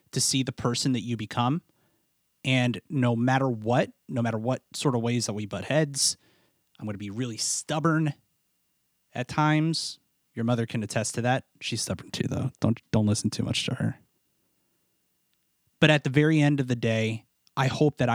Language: English